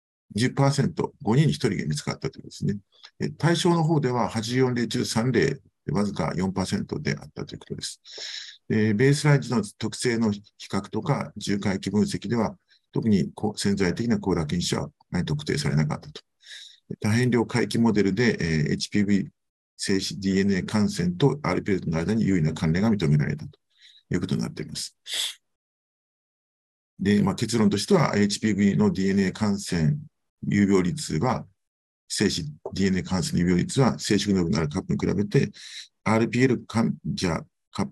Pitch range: 90-120 Hz